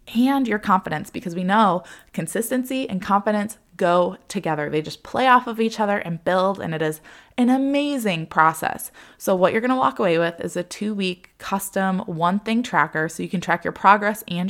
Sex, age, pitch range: female, 20-39, 165-215 Hz